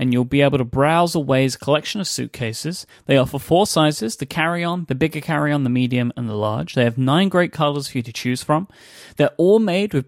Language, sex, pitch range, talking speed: English, male, 120-150 Hz, 225 wpm